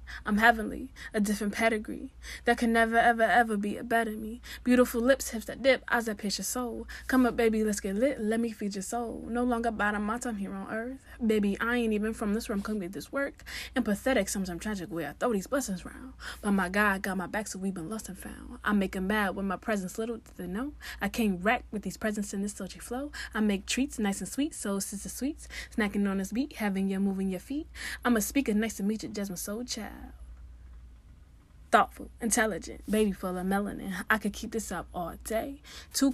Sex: female